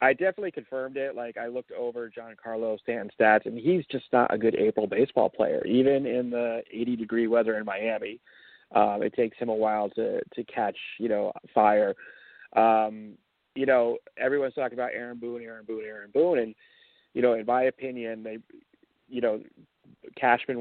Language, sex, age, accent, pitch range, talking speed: English, male, 30-49, American, 105-130 Hz, 185 wpm